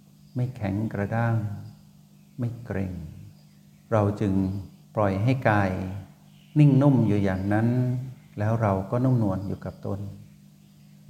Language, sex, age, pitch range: Thai, male, 60-79, 100-135 Hz